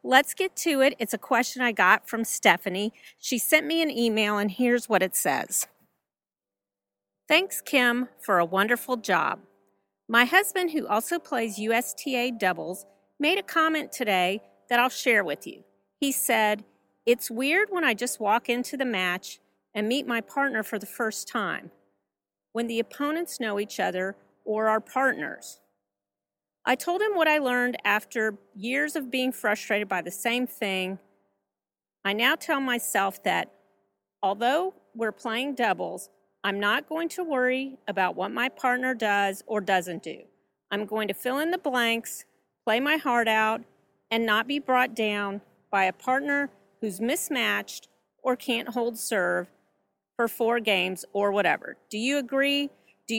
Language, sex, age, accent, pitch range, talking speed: English, female, 40-59, American, 190-255 Hz, 160 wpm